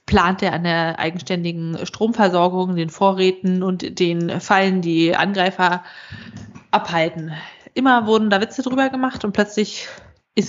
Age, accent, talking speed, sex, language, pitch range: 20-39, German, 130 wpm, female, German, 190-230 Hz